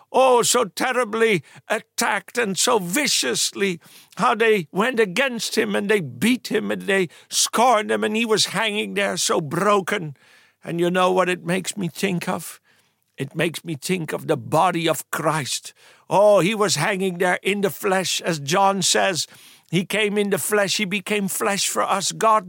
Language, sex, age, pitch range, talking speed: English, male, 60-79, 170-215 Hz, 180 wpm